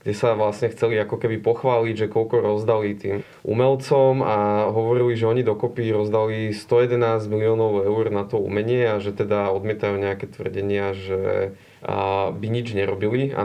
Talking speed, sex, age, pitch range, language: 155 wpm, male, 20-39, 105-120 Hz, Slovak